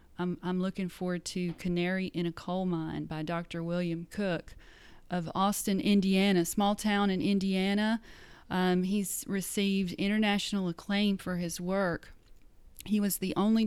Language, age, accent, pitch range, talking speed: English, 40-59, American, 160-185 Hz, 140 wpm